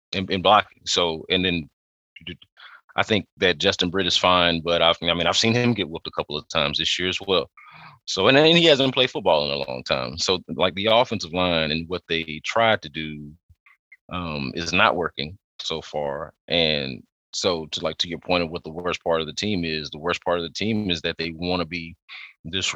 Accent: American